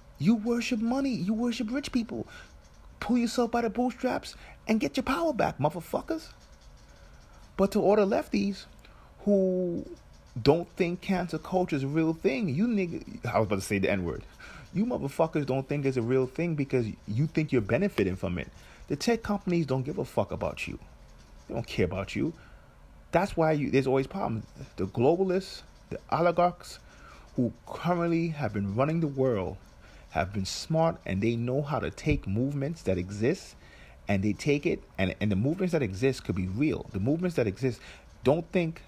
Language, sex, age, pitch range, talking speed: English, male, 30-49, 105-175 Hz, 180 wpm